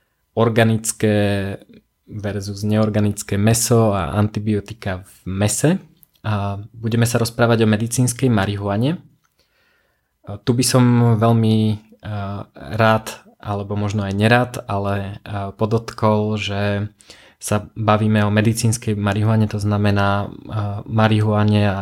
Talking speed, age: 95 wpm, 20-39